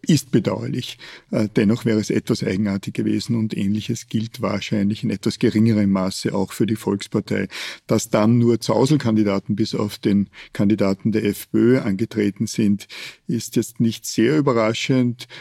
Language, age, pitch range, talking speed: German, 50-69, 105-120 Hz, 145 wpm